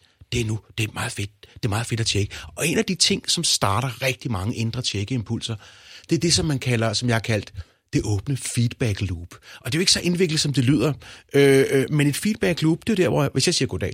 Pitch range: 110-165 Hz